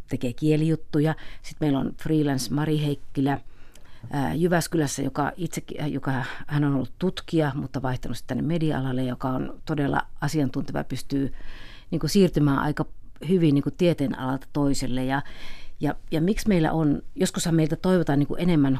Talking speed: 145 wpm